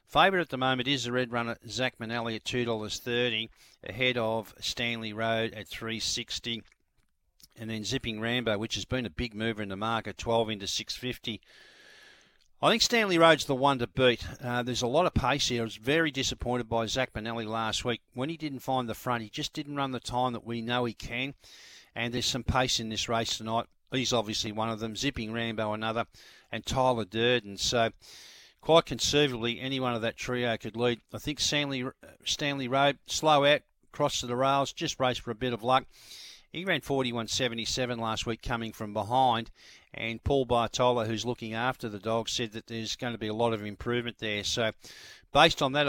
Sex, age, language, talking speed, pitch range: male, 50-69, English, 200 wpm, 115-130 Hz